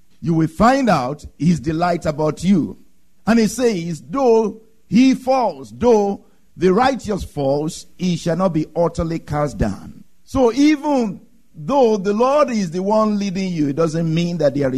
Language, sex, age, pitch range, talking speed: English, male, 50-69, 155-230 Hz, 160 wpm